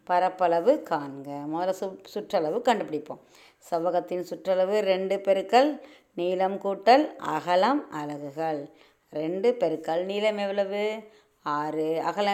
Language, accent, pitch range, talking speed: Tamil, native, 165-220 Hz, 95 wpm